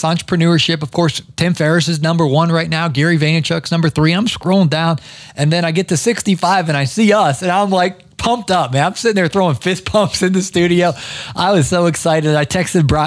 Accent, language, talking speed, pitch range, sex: American, English, 220 wpm, 145-180 Hz, male